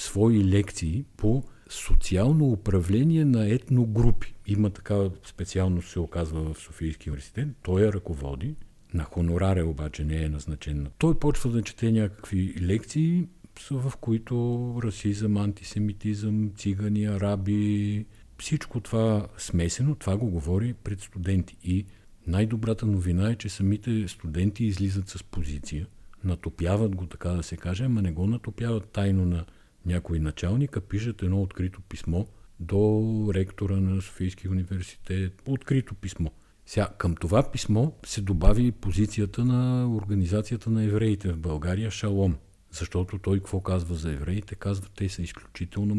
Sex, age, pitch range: male, 50-69, 90-110 Hz